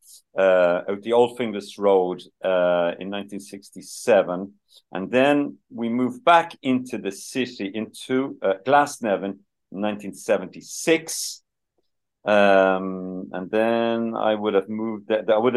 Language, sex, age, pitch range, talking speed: English, male, 50-69, 95-120 Hz, 125 wpm